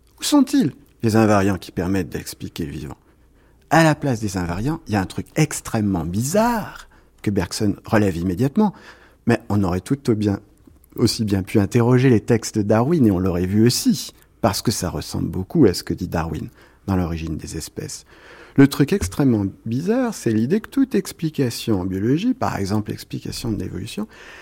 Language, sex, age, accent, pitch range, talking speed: French, male, 50-69, French, 100-155 Hz, 180 wpm